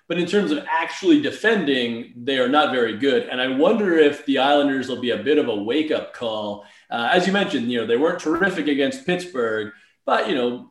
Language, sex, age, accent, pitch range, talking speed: English, male, 20-39, American, 125-180 Hz, 220 wpm